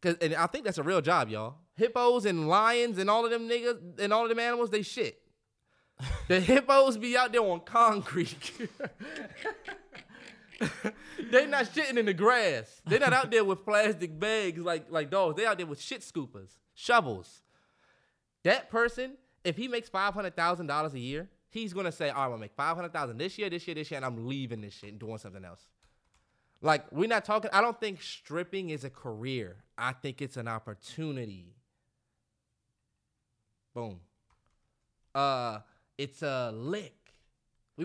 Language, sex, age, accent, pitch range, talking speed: English, male, 20-39, American, 125-210 Hz, 175 wpm